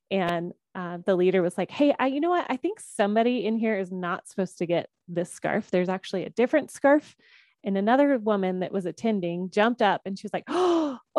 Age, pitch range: 20-39, 185-245 Hz